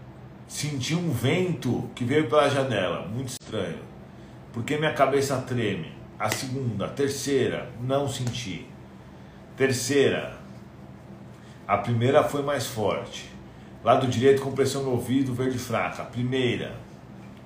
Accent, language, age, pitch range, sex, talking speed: Brazilian, Portuguese, 50-69, 100-135 Hz, male, 115 wpm